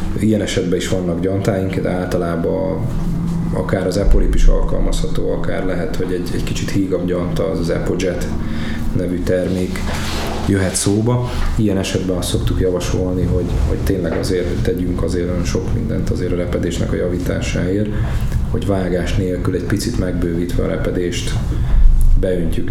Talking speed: 150 wpm